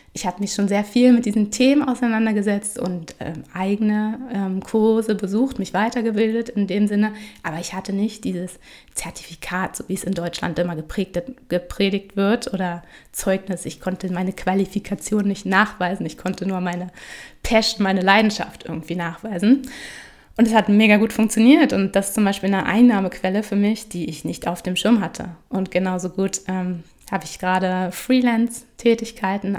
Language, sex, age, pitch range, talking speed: German, female, 20-39, 185-220 Hz, 170 wpm